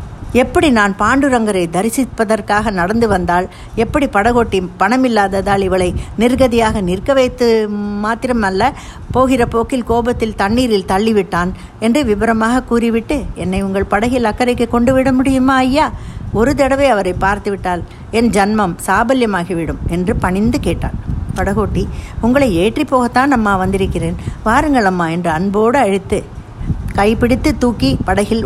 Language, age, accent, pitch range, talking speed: Tamil, 60-79, native, 195-250 Hz, 115 wpm